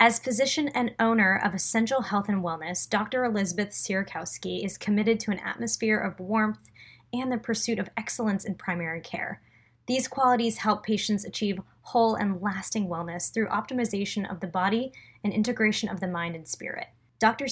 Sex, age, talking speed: female, 20-39, 170 wpm